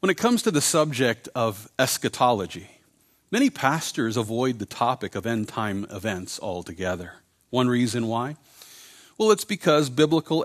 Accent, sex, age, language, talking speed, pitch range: American, male, 40-59, English, 140 wpm, 115-175 Hz